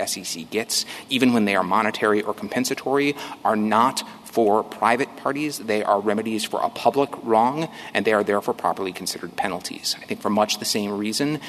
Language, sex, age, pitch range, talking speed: English, male, 30-49, 100-125 Hz, 185 wpm